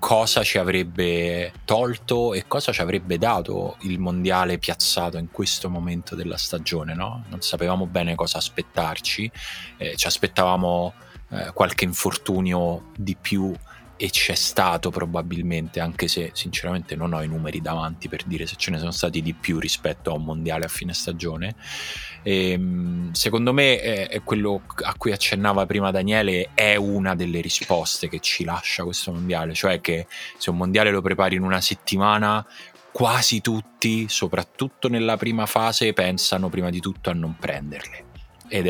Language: Italian